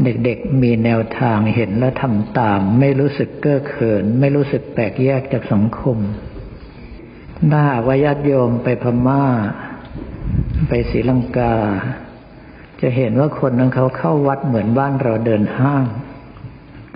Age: 60-79